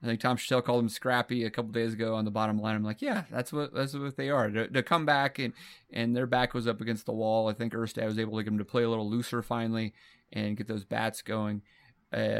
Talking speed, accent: 280 wpm, American